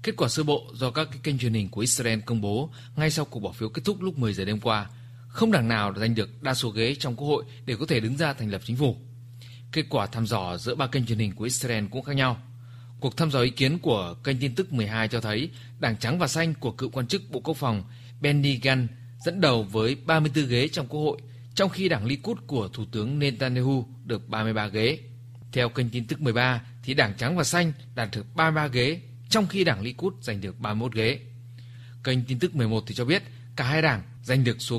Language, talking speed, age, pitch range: Vietnamese, 240 wpm, 20-39, 115-140 Hz